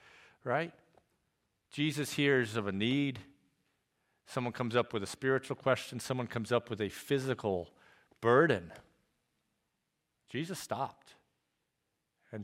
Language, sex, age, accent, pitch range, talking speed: English, male, 50-69, American, 115-155 Hz, 110 wpm